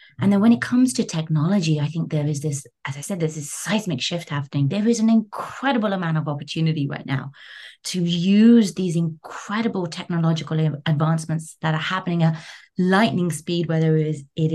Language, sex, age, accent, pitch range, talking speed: English, female, 30-49, British, 150-175 Hz, 175 wpm